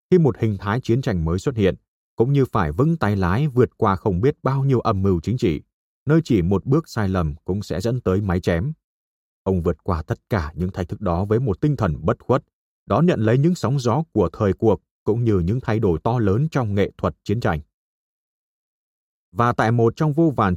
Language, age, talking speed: Vietnamese, 30-49, 230 wpm